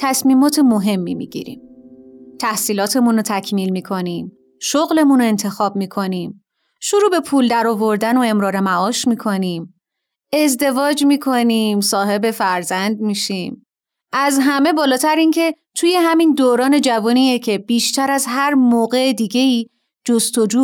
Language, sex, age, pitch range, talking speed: Persian, female, 30-49, 200-260 Hz, 115 wpm